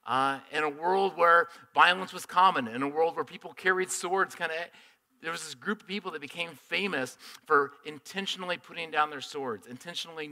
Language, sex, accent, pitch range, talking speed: English, male, American, 135-185 Hz, 185 wpm